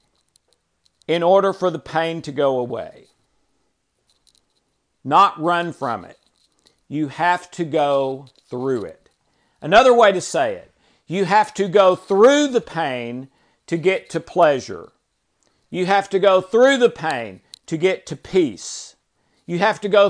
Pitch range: 155-205 Hz